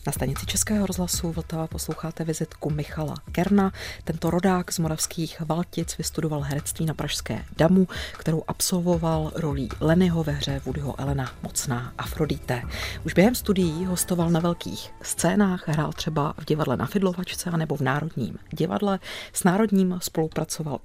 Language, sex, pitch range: Czech, female, 140-180 Hz